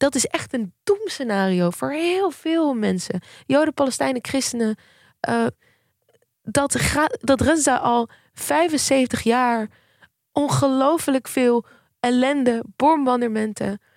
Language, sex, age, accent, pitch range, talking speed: Dutch, female, 20-39, Dutch, 220-275 Hz, 100 wpm